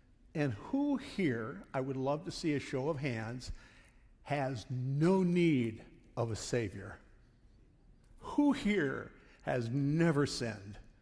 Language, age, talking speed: English, 50-69, 125 wpm